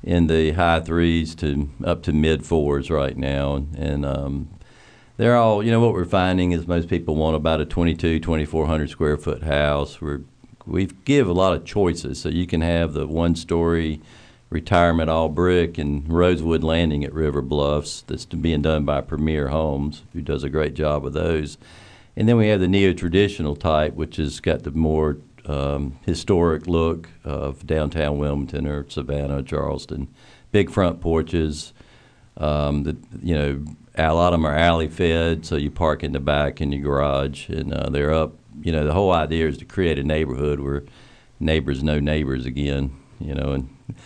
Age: 50-69